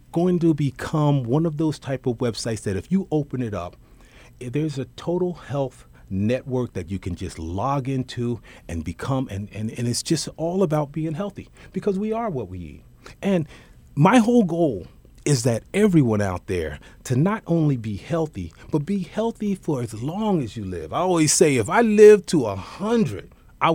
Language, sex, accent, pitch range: English, male, American, 105-155 Hz